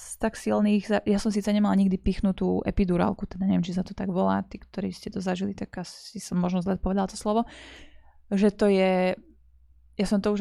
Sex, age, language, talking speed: female, 20-39, Slovak, 210 wpm